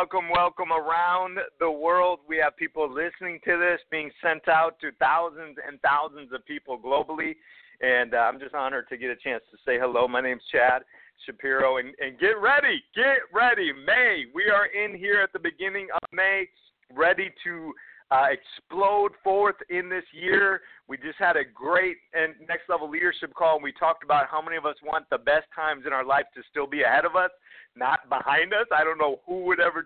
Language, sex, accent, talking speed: English, male, American, 200 wpm